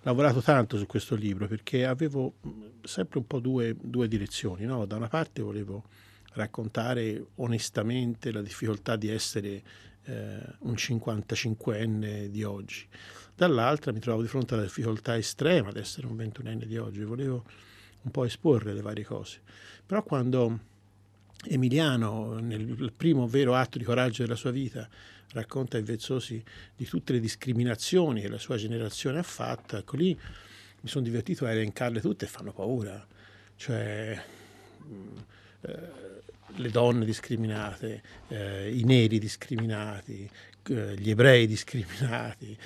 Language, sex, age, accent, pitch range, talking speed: Italian, male, 50-69, native, 105-125 Hz, 140 wpm